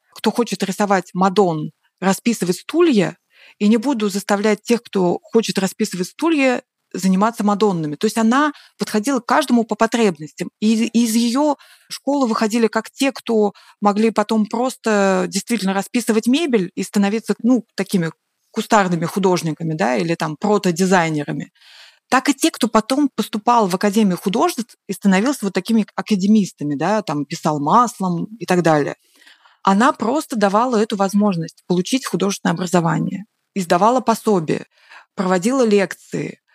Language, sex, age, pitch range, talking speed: Russian, female, 30-49, 185-230 Hz, 135 wpm